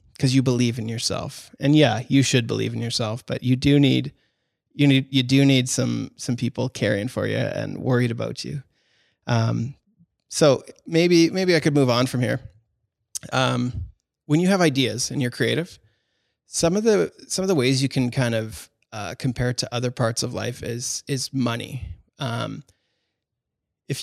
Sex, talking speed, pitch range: male, 180 wpm, 120-145 Hz